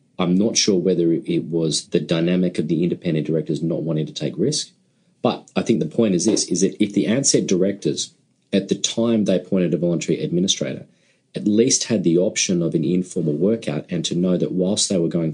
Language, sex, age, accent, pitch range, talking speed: English, male, 30-49, Australian, 80-95 Hz, 215 wpm